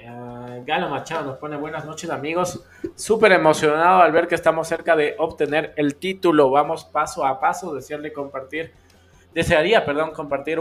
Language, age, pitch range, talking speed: Spanish, 20-39, 140-165 Hz, 160 wpm